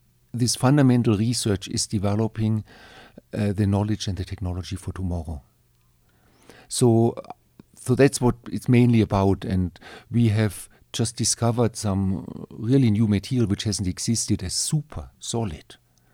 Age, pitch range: 50-69, 95-125 Hz